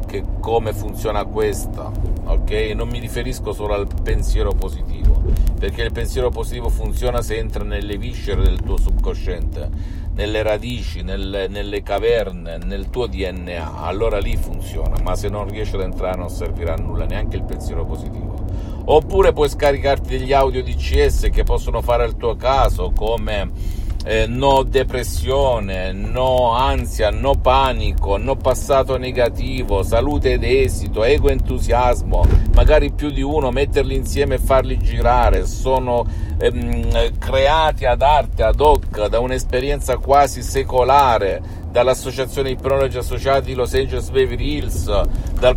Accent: native